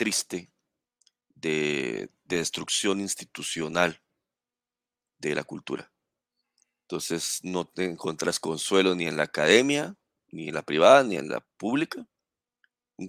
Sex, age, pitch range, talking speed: male, 40-59, 90-120 Hz, 120 wpm